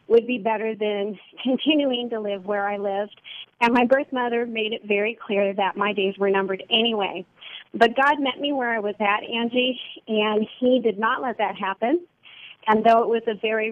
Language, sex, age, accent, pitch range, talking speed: English, female, 40-59, American, 205-255 Hz, 200 wpm